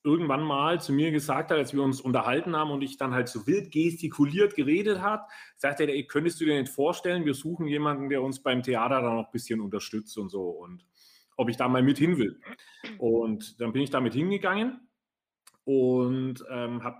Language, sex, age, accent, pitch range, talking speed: German, male, 30-49, German, 125-170 Hz, 205 wpm